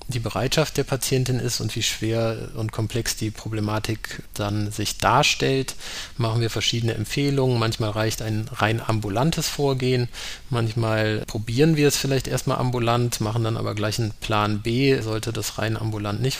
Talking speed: 160 wpm